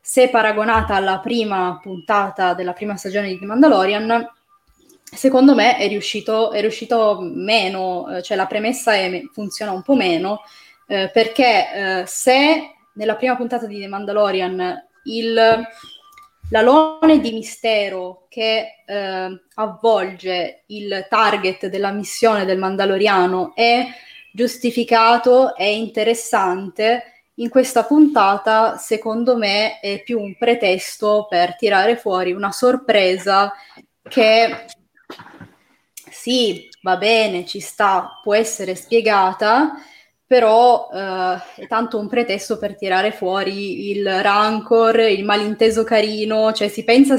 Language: Italian